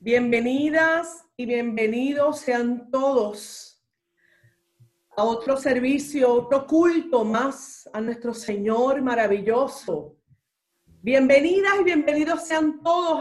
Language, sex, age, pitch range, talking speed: Spanish, female, 40-59, 225-315 Hz, 90 wpm